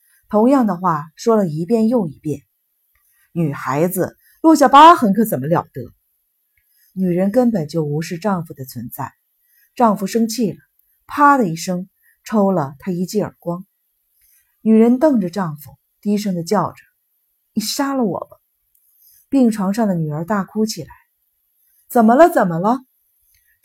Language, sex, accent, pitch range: Chinese, female, native, 165-235 Hz